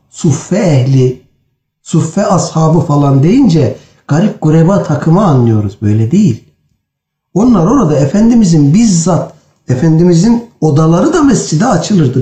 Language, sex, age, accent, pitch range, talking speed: Turkish, male, 60-79, native, 120-170 Hz, 105 wpm